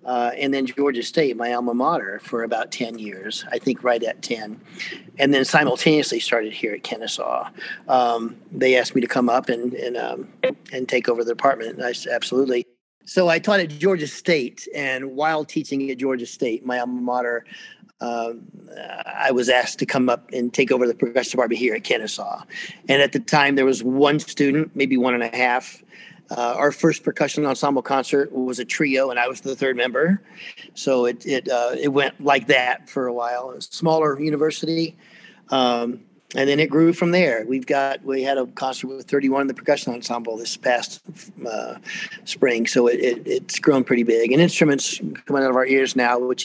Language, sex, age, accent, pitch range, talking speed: English, male, 40-59, American, 120-145 Hz, 205 wpm